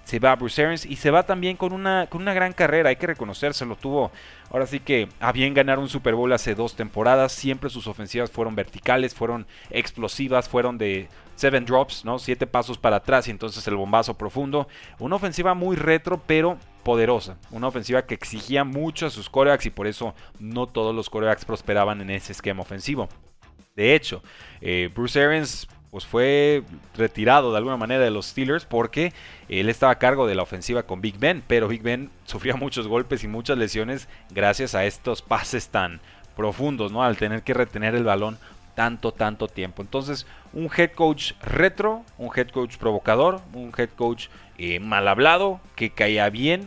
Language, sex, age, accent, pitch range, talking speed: Spanish, male, 30-49, Mexican, 105-140 Hz, 190 wpm